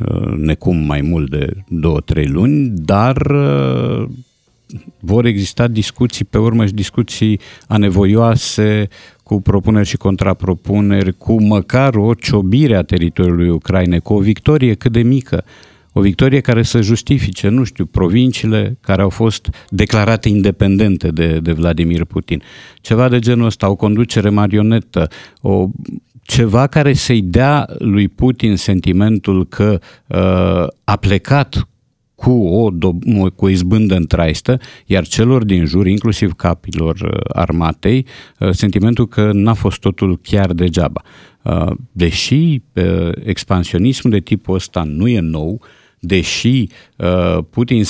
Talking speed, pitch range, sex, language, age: 125 wpm, 90-120 Hz, male, Romanian, 50-69